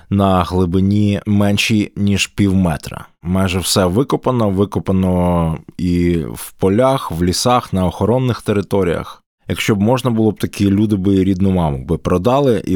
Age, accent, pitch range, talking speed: 20-39, native, 85-105 Hz, 145 wpm